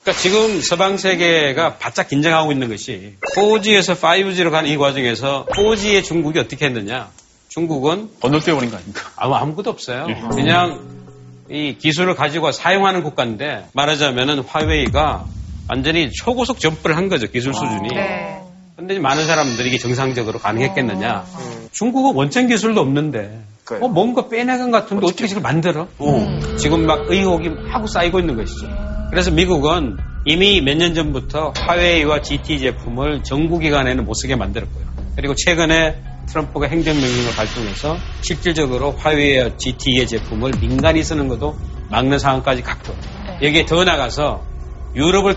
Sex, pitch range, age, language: male, 125-175 Hz, 40-59, Korean